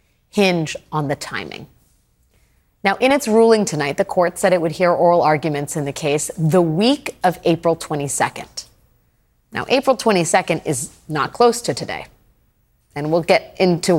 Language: English